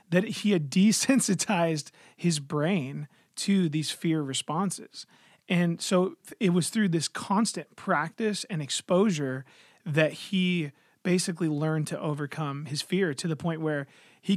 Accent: American